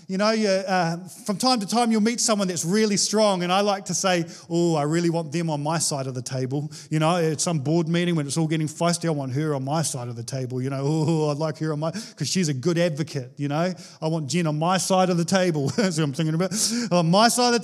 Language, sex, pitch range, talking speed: English, male, 150-195 Hz, 280 wpm